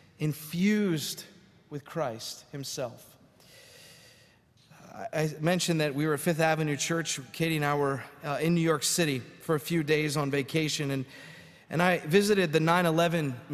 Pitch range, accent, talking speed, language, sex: 155-200 Hz, American, 150 wpm, English, male